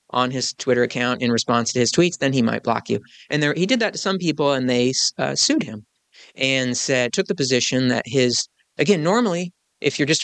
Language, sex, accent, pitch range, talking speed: English, male, American, 125-155 Hz, 225 wpm